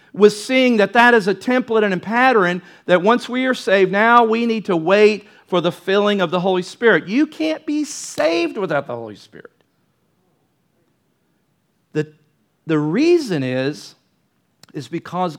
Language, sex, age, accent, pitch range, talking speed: English, male, 50-69, American, 155-205 Hz, 160 wpm